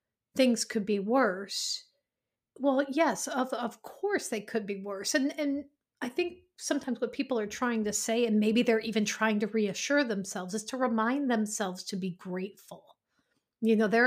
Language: English